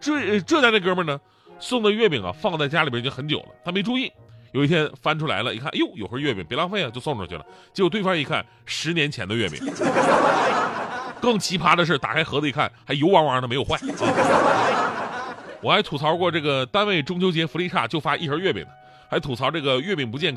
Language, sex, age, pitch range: Chinese, male, 30-49, 140-220 Hz